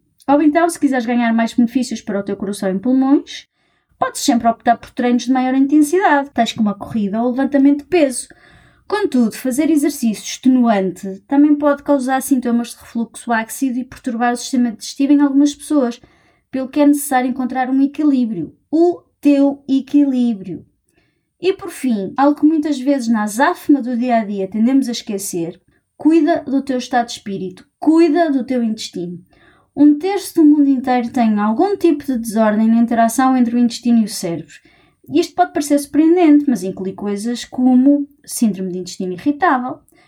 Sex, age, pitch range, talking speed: female, 20-39, 230-290 Hz, 170 wpm